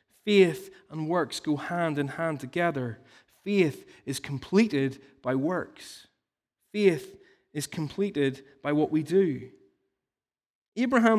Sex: male